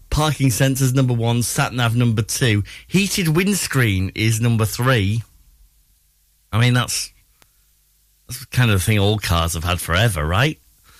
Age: 30-49